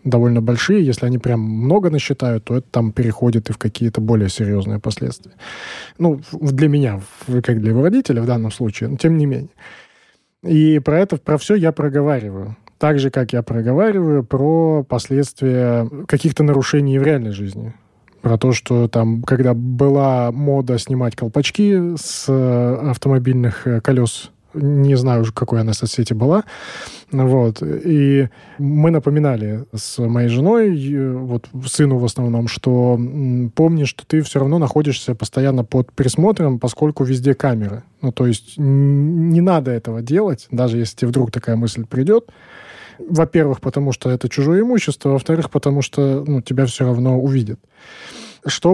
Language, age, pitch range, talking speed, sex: Russian, 20-39, 120-150 Hz, 150 wpm, male